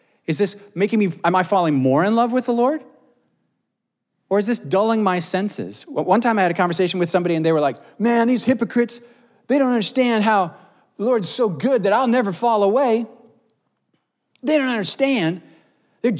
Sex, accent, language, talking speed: male, American, English, 190 wpm